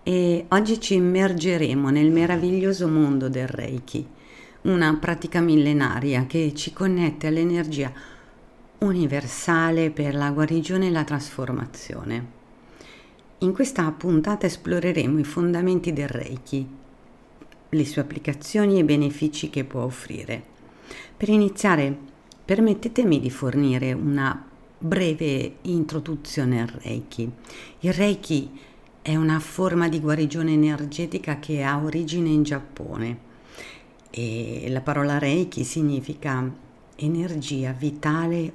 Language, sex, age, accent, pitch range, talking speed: Italian, female, 50-69, native, 135-170 Hz, 110 wpm